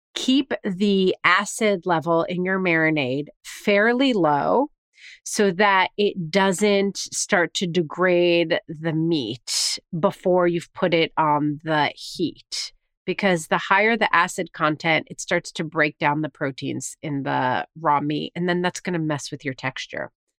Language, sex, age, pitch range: English, female, 30-49, 165-210 Hz